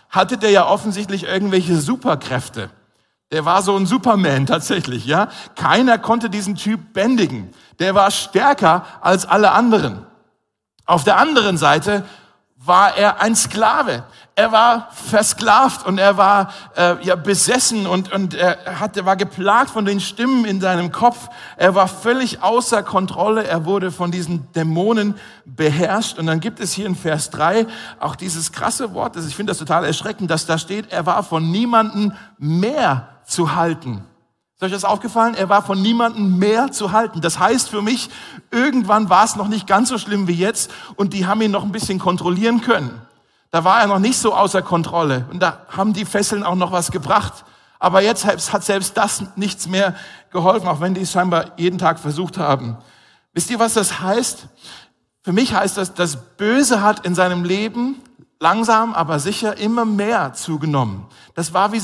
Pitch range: 170-215 Hz